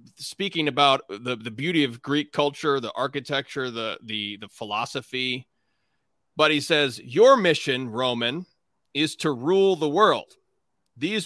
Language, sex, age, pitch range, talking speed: English, male, 30-49, 130-165 Hz, 135 wpm